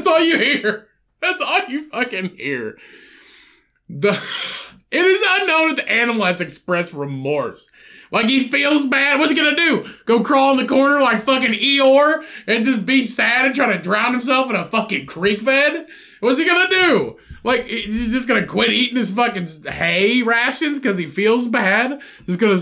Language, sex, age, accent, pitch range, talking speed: English, male, 20-39, American, 200-305 Hz, 195 wpm